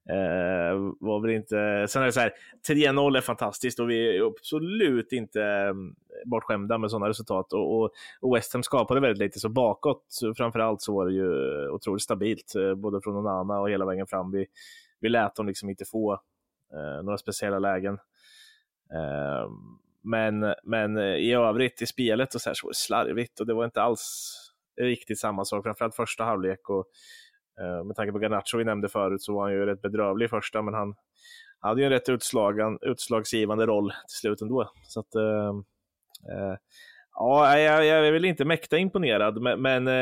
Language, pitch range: Swedish, 100-125 Hz